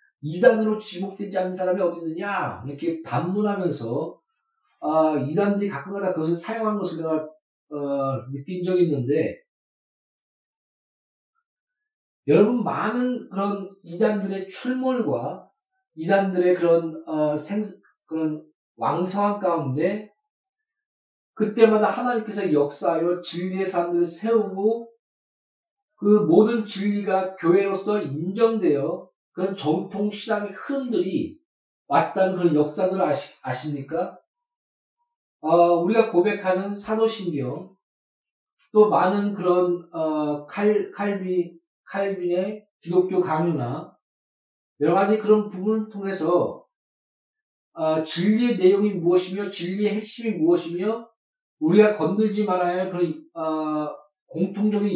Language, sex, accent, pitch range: Korean, male, native, 170-215 Hz